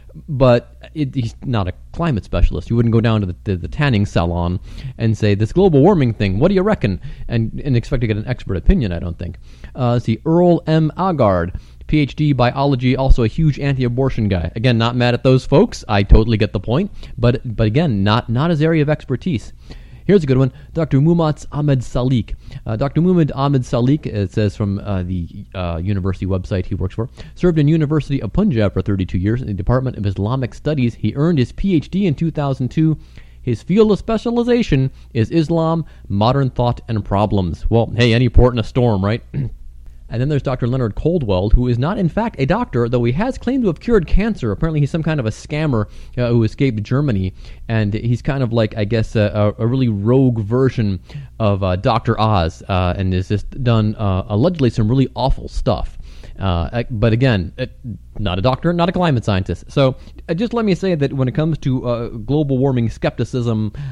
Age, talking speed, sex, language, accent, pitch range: 30-49, 200 wpm, male, English, American, 105-140 Hz